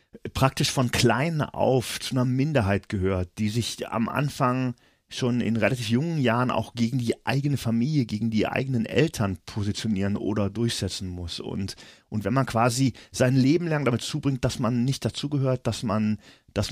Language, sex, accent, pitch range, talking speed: German, male, German, 100-120 Hz, 160 wpm